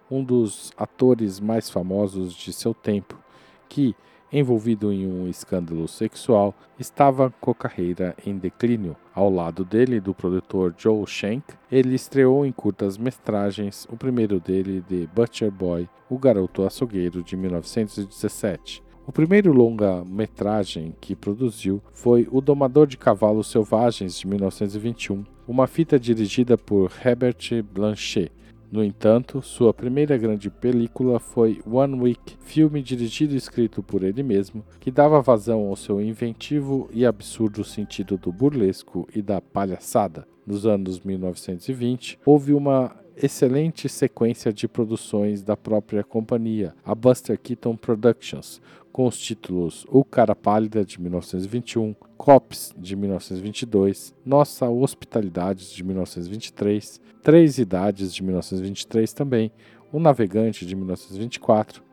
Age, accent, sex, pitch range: 50-69, Brazilian, male, 95-125 Hz